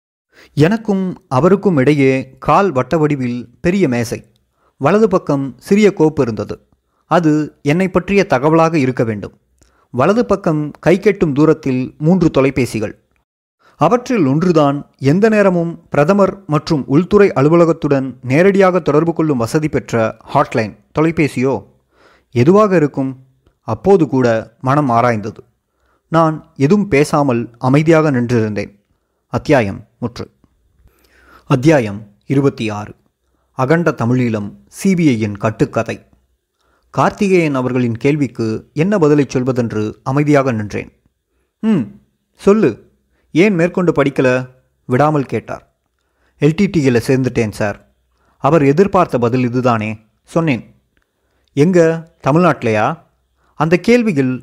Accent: native